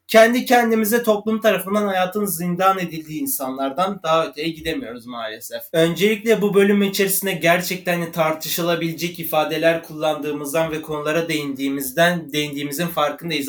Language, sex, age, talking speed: Turkish, male, 30-49, 110 wpm